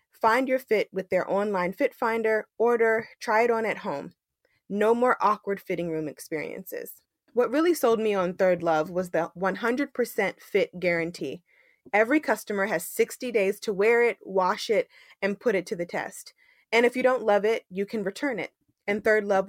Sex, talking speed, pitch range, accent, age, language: female, 190 wpm, 180-230 Hz, American, 20-39, English